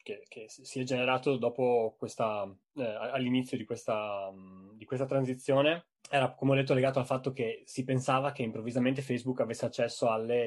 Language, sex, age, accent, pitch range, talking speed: Italian, male, 20-39, native, 110-135 Hz, 170 wpm